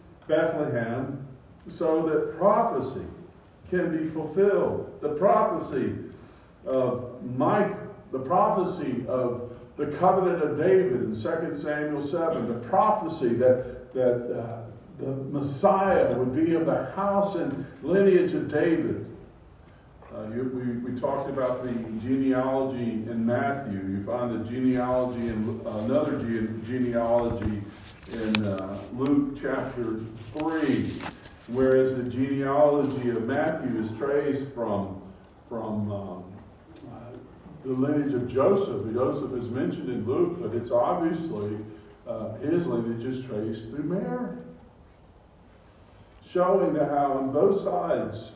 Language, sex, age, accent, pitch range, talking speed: English, male, 50-69, American, 115-150 Hz, 120 wpm